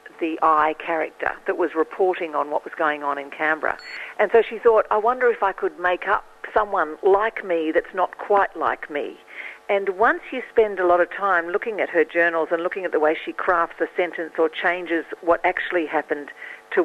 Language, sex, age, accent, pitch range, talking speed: English, female, 50-69, Australian, 160-210 Hz, 210 wpm